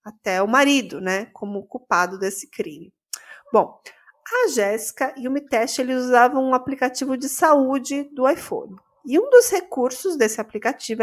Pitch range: 215-285 Hz